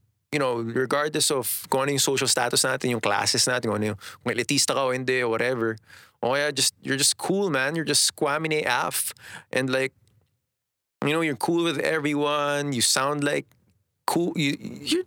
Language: English